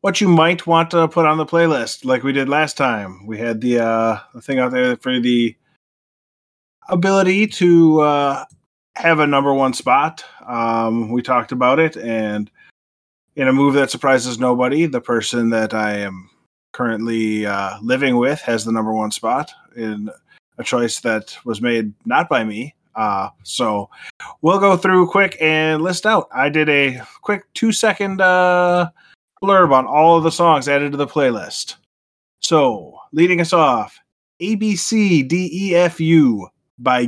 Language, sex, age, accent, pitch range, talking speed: English, male, 20-39, American, 120-165 Hz, 155 wpm